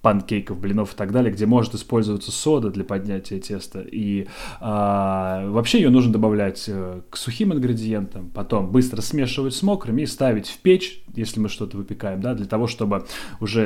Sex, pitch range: male, 105-125 Hz